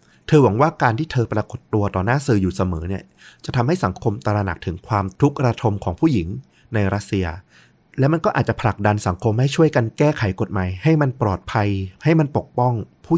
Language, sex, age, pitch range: Thai, male, 30-49, 95-125 Hz